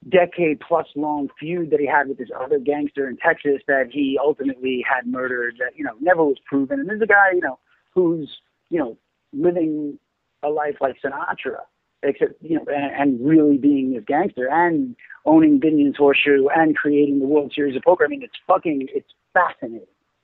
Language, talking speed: English, 185 wpm